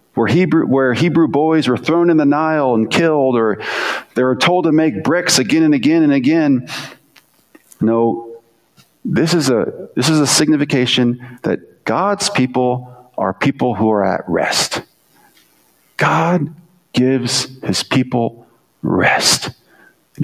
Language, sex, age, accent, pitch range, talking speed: English, male, 40-59, American, 115-155 Hz, 135 wpm